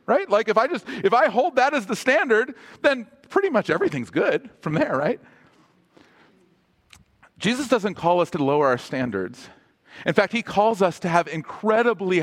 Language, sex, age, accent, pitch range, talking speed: English, male, 40-59, American, 125-200 Hz, 175 wpm